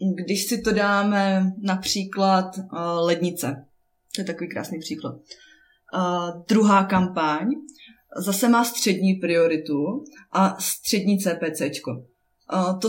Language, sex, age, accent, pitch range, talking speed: Czech, female, 20-39, native, 175-205 Hz, 100 wpm